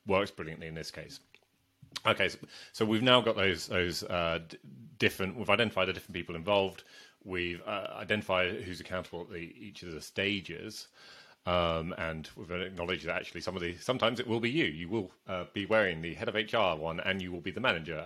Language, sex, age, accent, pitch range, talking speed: English, male, 30-49, British, 85-100 Hz, 205 wpm